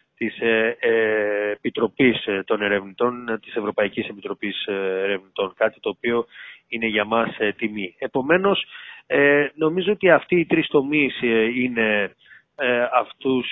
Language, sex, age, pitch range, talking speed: Greek, male, 30-49, 110-145 Hz, 105 wpm